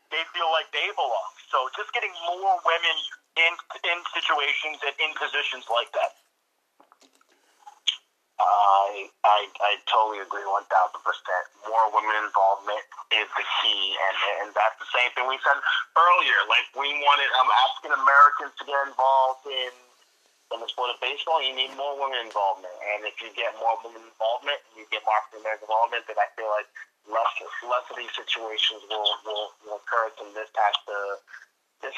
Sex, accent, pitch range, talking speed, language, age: male, American, 110-140 Hz, 175 wpm, English, 30-49